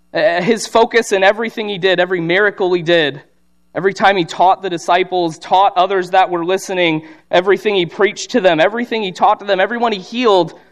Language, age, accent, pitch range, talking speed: English, 30-49, American, 160-205 Hz, 190 wpm